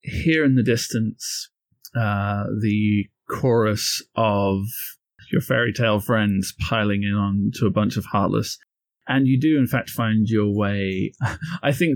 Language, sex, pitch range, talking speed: English, male, 100-120 Hz, 150 wpm